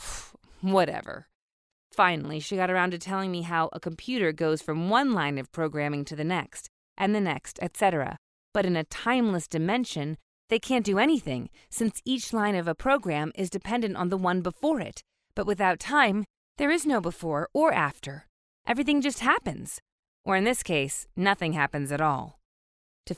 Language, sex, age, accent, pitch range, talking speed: English, female, 30-49, American, 150-200 Hz, 175 wpm